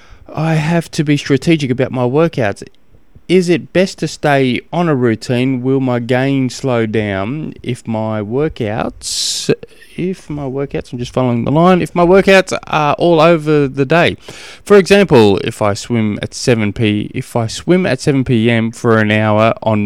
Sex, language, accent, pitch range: male, English, Australian, 110-145 Hz